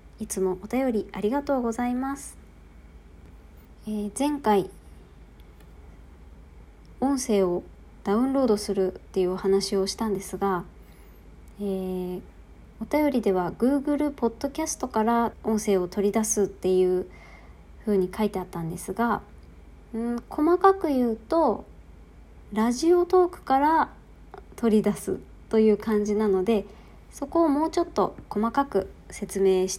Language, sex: Japanese, male